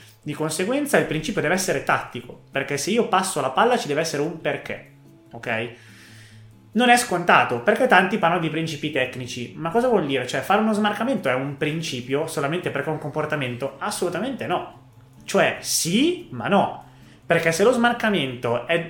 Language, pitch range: Italian, 125-170 Hz